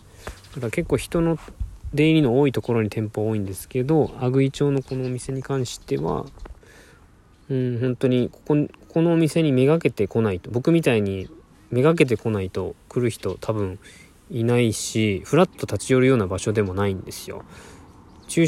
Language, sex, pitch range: Japanese, male, 100-135 Hz